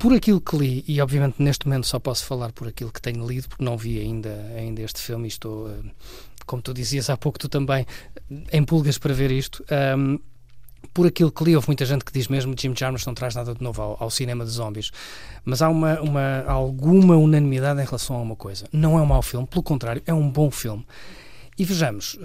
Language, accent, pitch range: Portuguese, Portuguese, 120-155 Hz